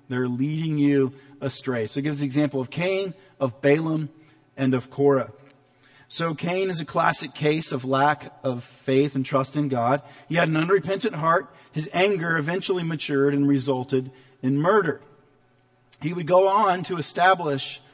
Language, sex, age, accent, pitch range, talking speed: English, male, 40-59, American, 135-170 Hz, 165 wpm